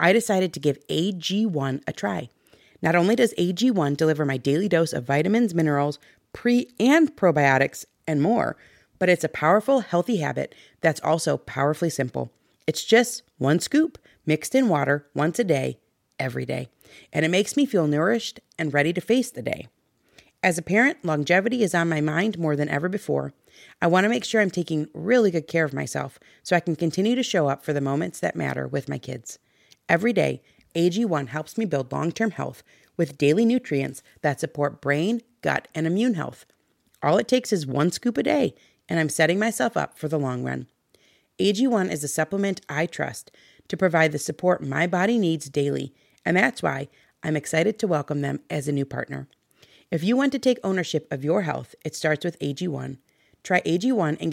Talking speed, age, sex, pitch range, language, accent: 190 wpm, 30-49, female, 145-210 Hz, English, American